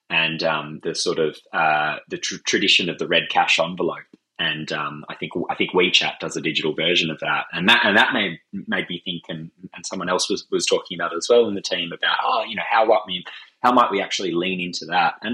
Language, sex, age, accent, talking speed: English, male, 20-39, Australian, 250 wpm